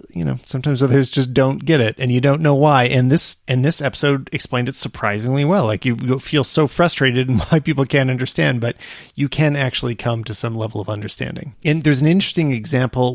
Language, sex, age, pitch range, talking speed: English, male, 30-49, 115-150 Hz, 215 wpm